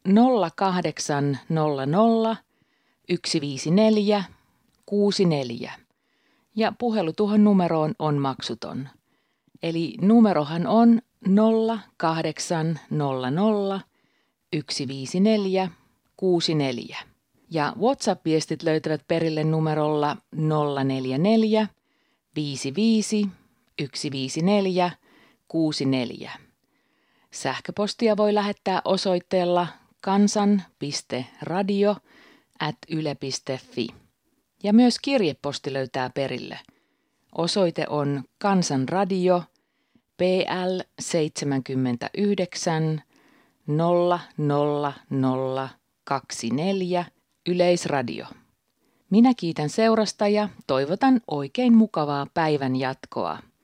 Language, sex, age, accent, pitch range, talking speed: Finnish, female, 40-59, native, 145-205 Hz, 55 wpm